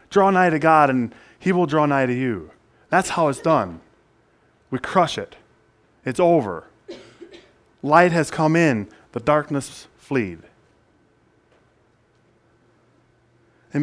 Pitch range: 115-155 Hz